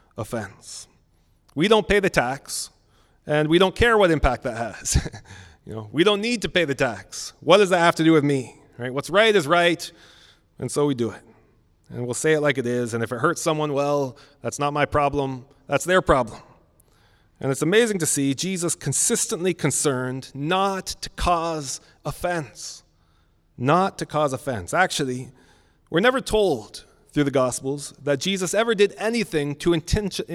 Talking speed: 180 wpm